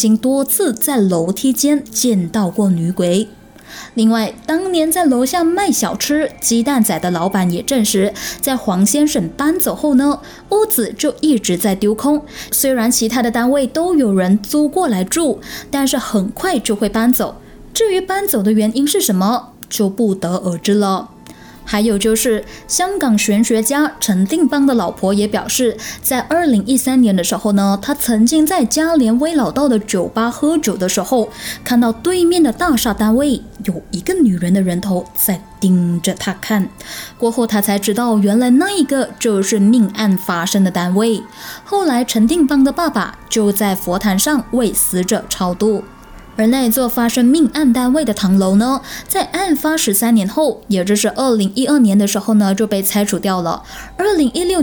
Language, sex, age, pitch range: Chinese, female, 20-39, 200-275 Hz